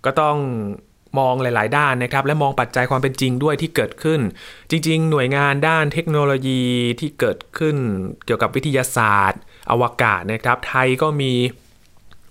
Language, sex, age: Thai, male, 20-39